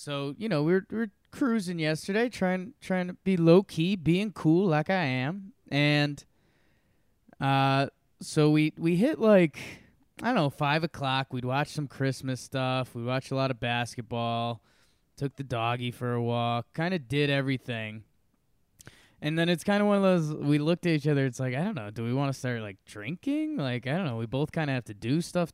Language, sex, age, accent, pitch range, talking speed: English, male, 20-39, American, 125-170 Hz, 210 wpm